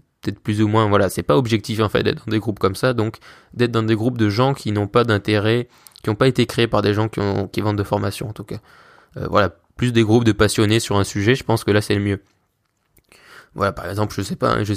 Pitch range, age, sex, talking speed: 100-115 Hz, 20-39, male, 275 wpm